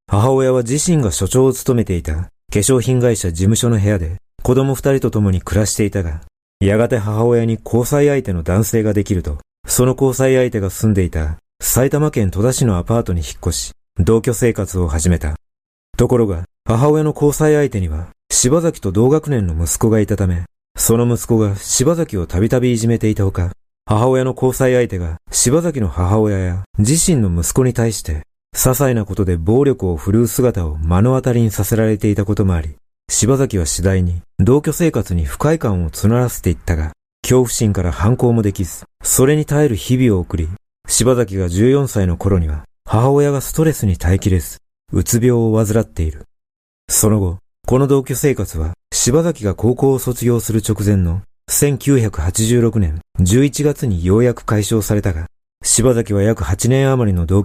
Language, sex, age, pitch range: Japanese, male, 40-59, 90-125 Hz